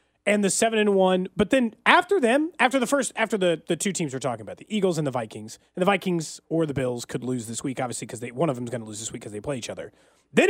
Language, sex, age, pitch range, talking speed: English, male, 30-49, 170-245 Hz, 295 wpm